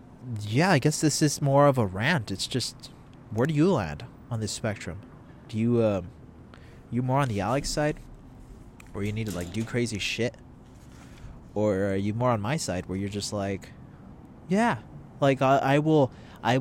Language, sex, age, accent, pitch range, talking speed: English, male, 30-49, American, 105-135 Hz, 190 wpm